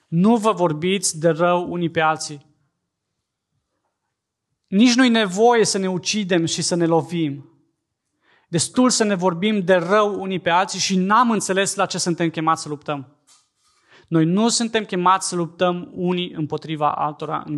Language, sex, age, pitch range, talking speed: Romanian, male, 20-39, 150-185 Hz, 155 wpm